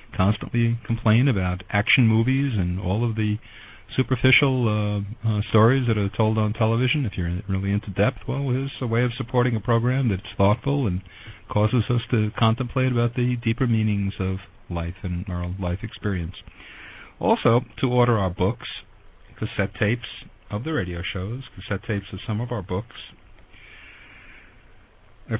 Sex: male